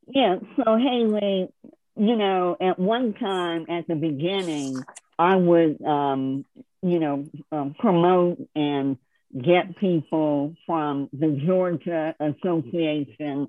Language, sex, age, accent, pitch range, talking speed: English, male, 50-69, American, 150-205 Hz, 110 wpm